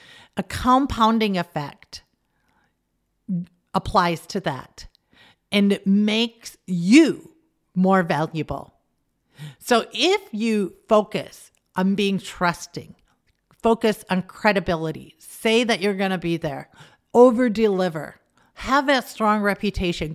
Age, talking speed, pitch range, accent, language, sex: 50-69, 105 wpm, 185-250 Hz, American, English, female